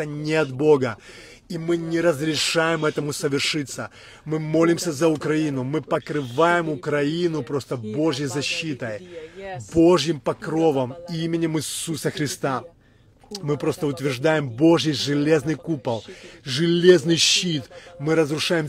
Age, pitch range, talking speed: 20-39, 145-170 Hz, 110 wpm